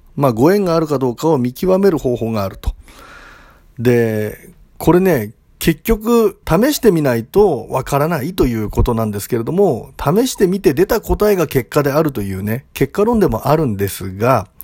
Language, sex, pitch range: Japanese, male, 110-185 Hz